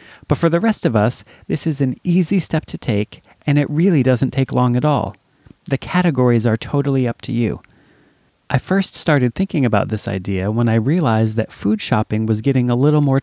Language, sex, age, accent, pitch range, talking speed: English, male, 30-49, American, 110-140 Hz, 210 wpm